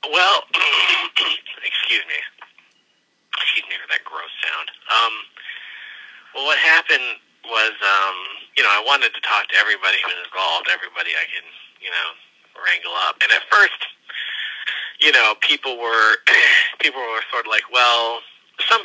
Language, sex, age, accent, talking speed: English, male, 30-49, American, 150 wpm